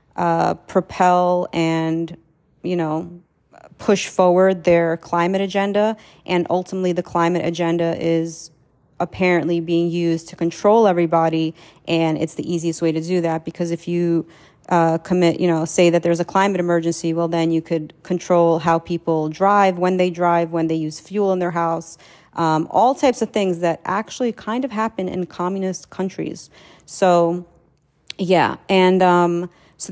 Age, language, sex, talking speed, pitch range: 30-49, English, female, 160 wpm, 170-190 Hz